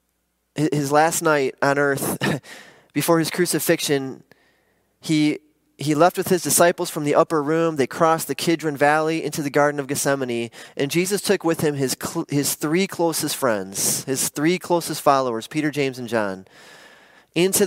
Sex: male